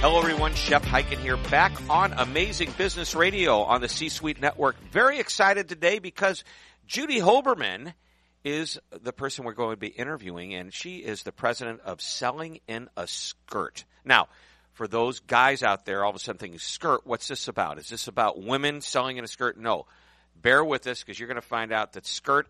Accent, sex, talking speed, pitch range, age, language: American, male, 195 wpm, 105-140 Hz, 50-69, English